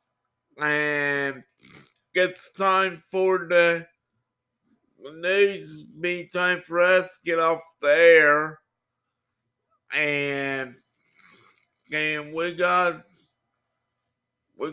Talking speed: 85 wpm